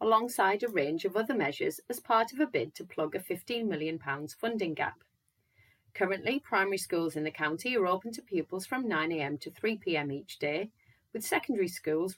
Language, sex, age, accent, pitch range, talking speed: English, female, 30-49, British, 155-215 Hz, 180 wpm